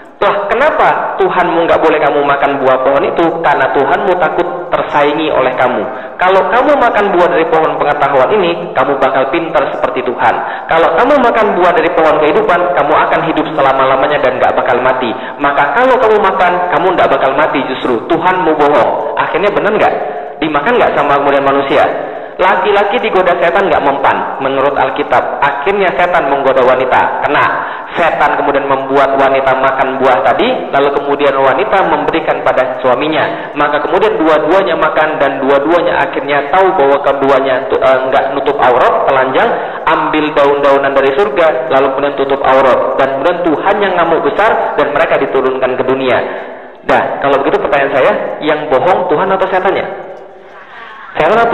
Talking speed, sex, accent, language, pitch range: 155 wpm, male, native, Indonesian, 135-190 Hz